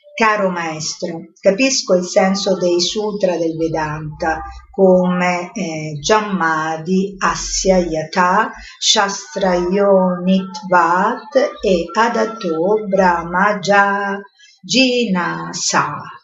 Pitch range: 170-220 Hz